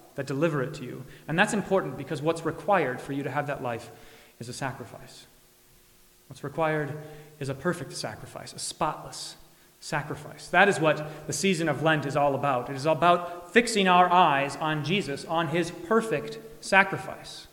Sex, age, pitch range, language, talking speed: male, 30-49, 135-170 Hz, English, 175 wpm